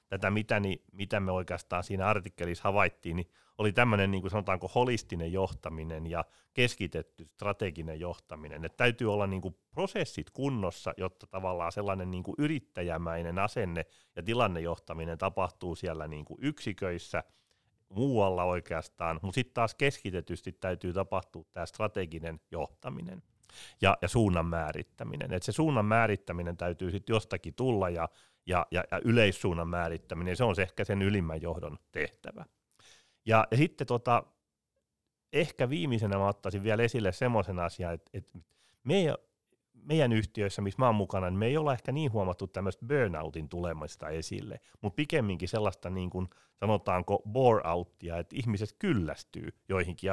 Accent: native